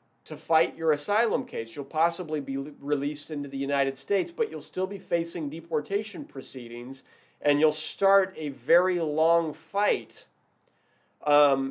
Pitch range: 140-185 Hz